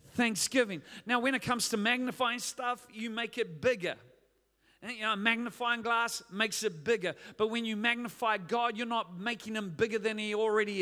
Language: English